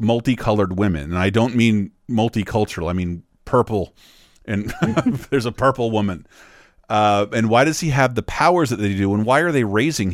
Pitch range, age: 105-145 Hz, 40-59